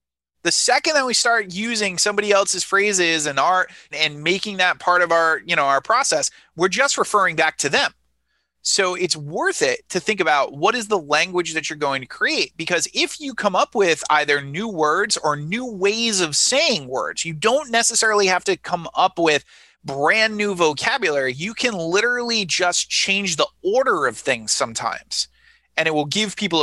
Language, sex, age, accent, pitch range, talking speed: English, male, 30-49, American, 155-215 Hz, 190 wpm